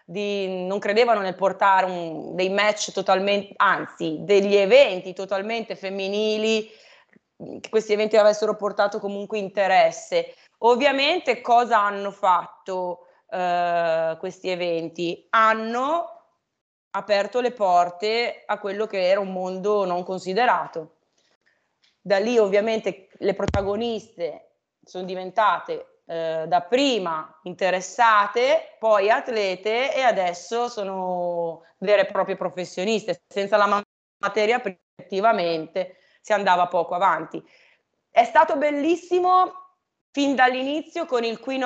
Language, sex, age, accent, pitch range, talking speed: Italian, female, 20-39, native, 185-240 Hz, 110 wpm